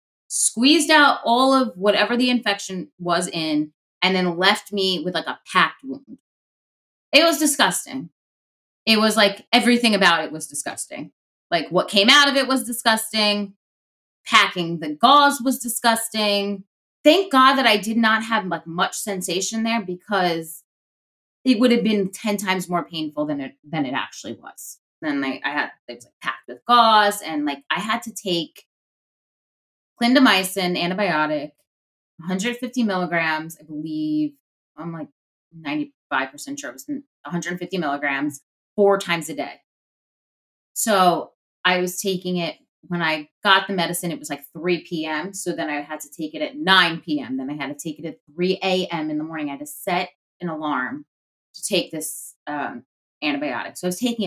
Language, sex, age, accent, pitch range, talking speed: English, female, 20-39, American, 165-235 Hz, 170 wpm